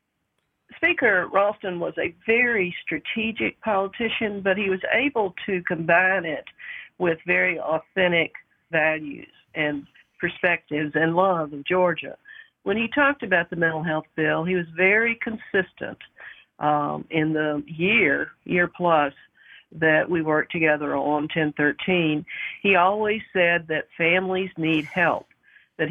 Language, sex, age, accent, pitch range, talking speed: English, female, 50-69, American, 160-195 Hz, 130 wpm